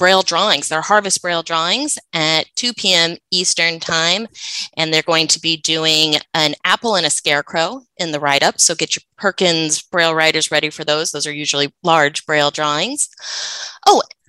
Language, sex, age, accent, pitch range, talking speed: English, female, 20-39, American, 155-205 Hz, 170 wpm